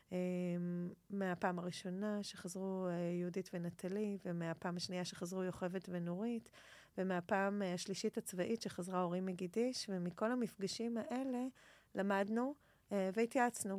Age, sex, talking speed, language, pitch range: 30-49, female, 90 wpm, Hebrew, 175-205 Hz